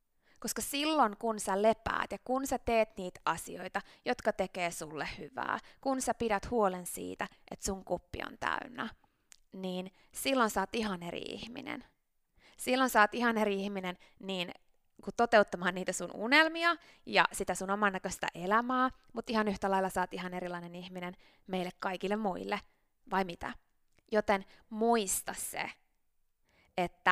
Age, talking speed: 20-39, 145 wpm